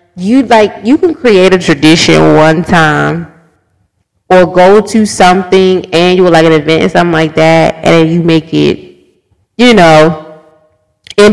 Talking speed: 155 wpm